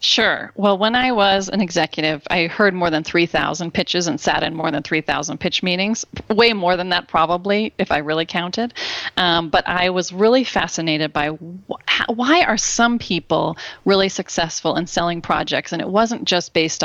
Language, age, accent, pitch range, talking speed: English, 30-49, American, 165-195 Hz, 190 wpm